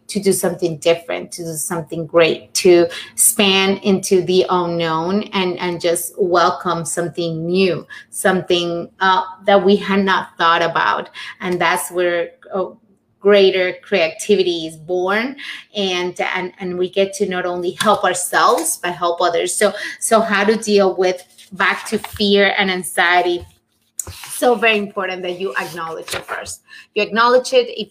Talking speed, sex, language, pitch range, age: 155 wpm, female, English, 175-200 Hz, 30-49